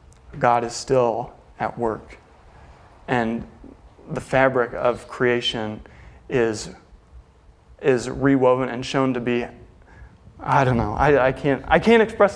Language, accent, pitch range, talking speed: English, American, 115-135 Hz, 125 wpm